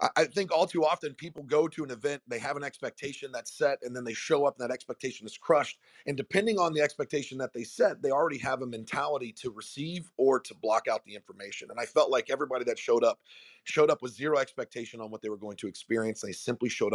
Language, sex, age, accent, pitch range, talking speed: English, male, 30-49, American, 125-165 Hz, 250 wpm